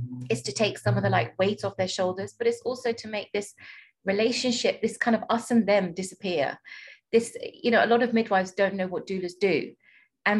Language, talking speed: English, 220 wpm